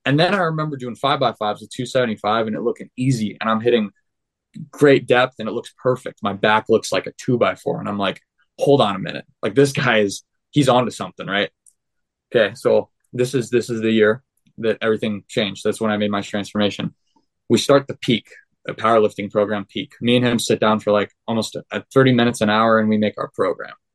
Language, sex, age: English, male, 20-39